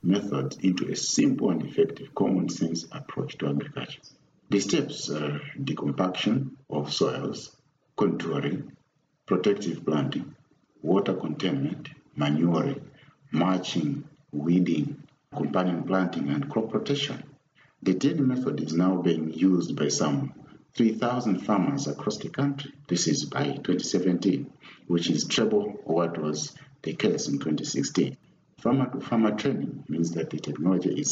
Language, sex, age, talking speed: English, male, 50-69, 125 wpm